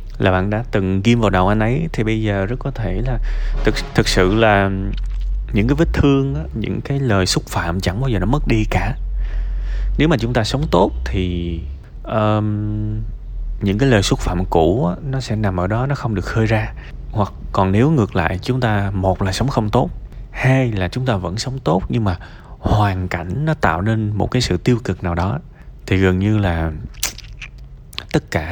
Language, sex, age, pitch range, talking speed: Vietnamese, male, 20-39, 90-120 Hz, 205 wpm